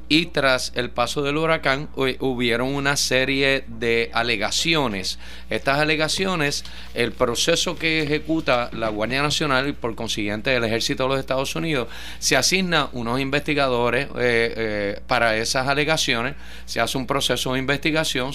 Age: 30-49